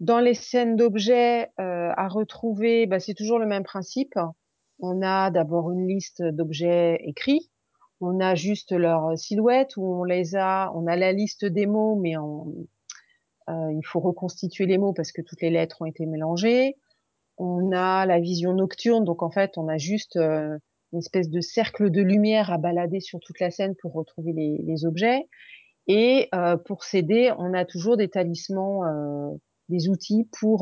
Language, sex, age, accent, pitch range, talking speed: French, female, 30-49, French, 170-210 Hz, 180 wpm